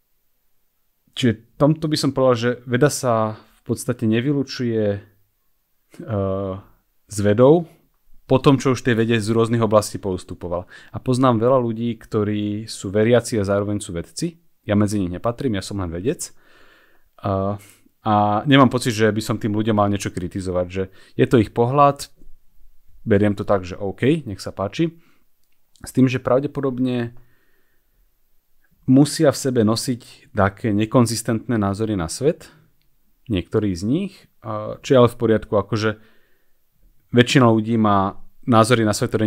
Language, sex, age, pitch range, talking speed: Slovak, male, 30-49, 100-125 Hz, 150 wpm